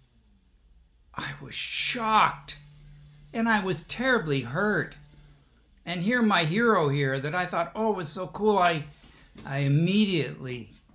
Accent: American